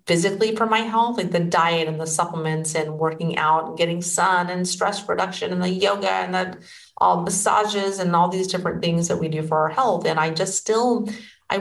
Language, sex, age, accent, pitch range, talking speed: English, female, 40-59, American, 155-180 Hz, 215 wpm